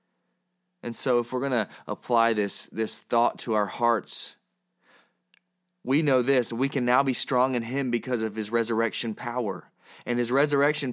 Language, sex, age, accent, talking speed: English, male, 20-39, American, 170 wpm